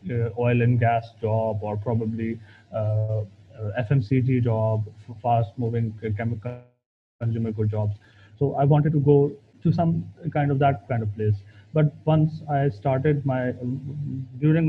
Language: English